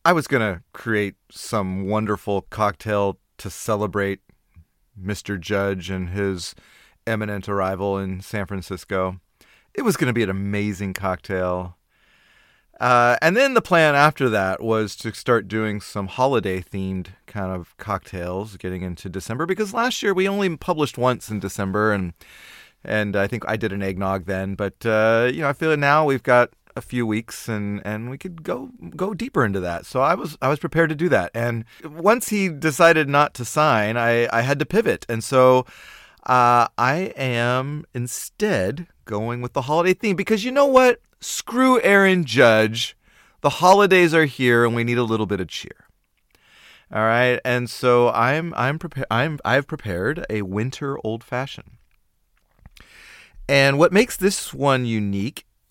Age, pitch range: 30-49, 100-150 Hz